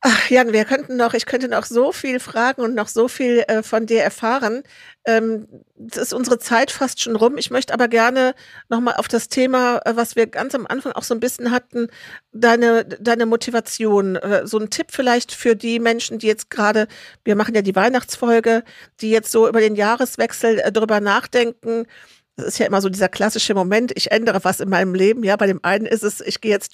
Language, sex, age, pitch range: German, female, 50-69, 210-240 Hz